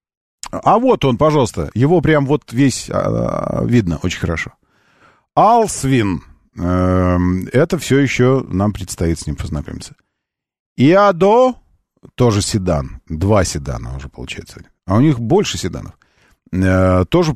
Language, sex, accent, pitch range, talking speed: Russian, male, native, 90-150 Hz, 125 wpm